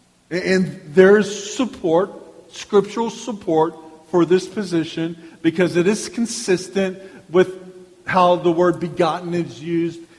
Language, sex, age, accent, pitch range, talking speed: English, male, 50-69, American, 145-185 Hz, 120 wpm